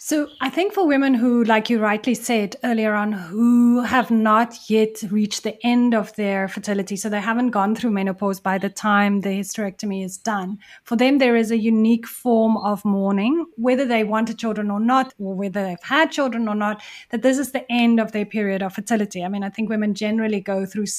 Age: 30-49